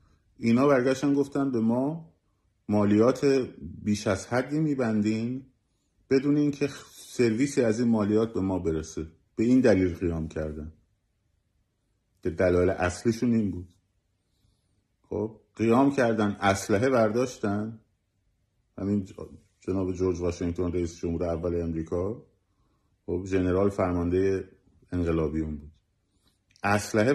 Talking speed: 100 wpm